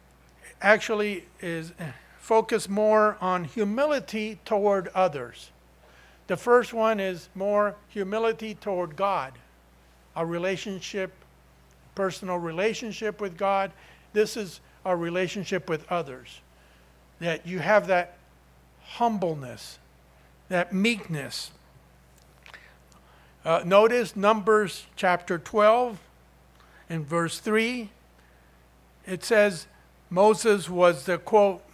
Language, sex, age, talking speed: English, male, 50-69, 95 wpm